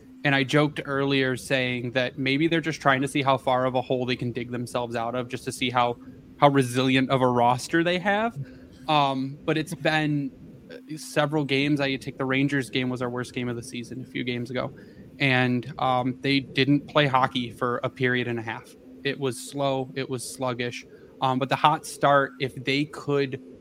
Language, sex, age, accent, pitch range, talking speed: English, male, 20-39, American, 125-150 Hz, 210 wpm